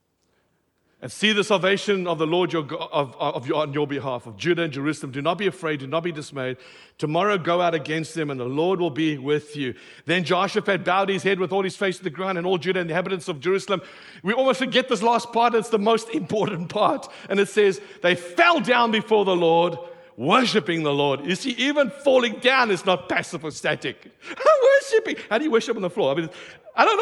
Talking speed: 215 wpm